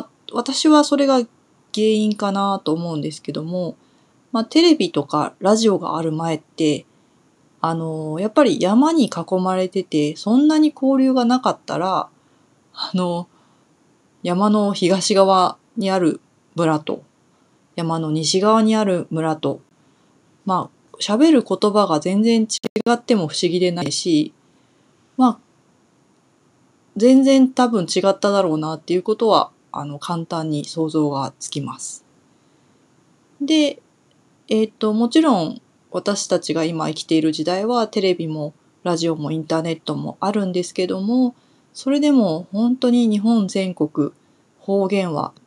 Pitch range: 160-235 Hz